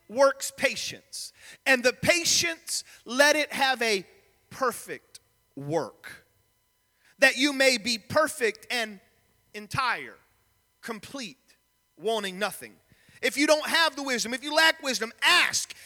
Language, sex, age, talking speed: English, male, 40-59, 120 wpm